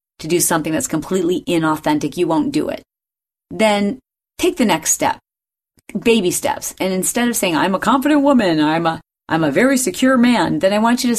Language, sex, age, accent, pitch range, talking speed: English, female, 30-49, American, 155-240 Hz, 195 wpm